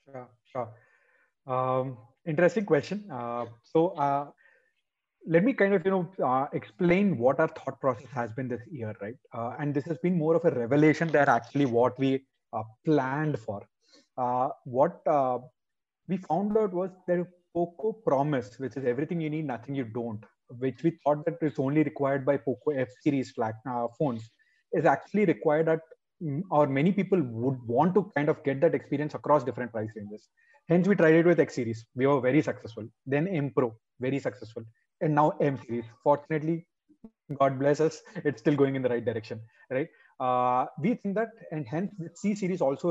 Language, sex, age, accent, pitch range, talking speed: Tamil, male, 30-49, native, 125-165 Hz, 185 wpm